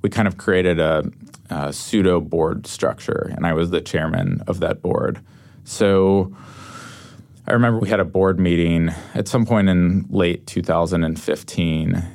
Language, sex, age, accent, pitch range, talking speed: English, male, 20-39, American, 85-100 Hz, 155 wpm